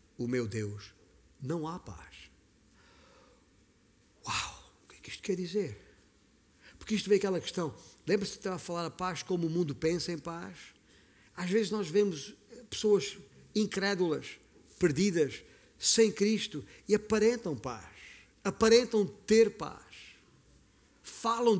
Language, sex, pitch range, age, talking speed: Portuguese, male, 120-185 Hz, 50-69, 135 wpm